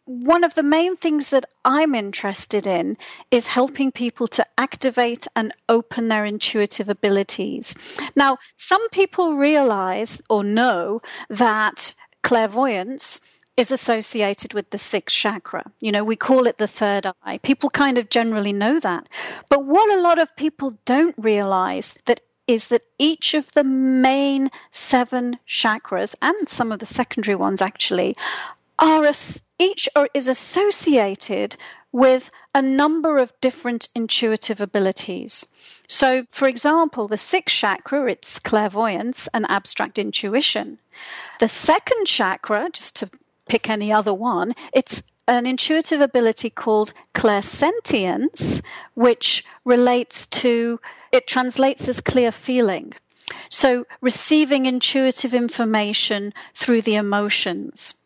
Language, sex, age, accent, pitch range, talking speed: English, female, 40-59, British, 220-285 Hz, 125 wpm